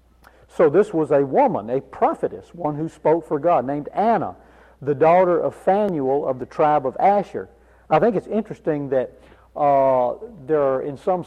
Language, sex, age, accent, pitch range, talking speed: English, male, 50-69, American, 130-170 Hz, 175 wpm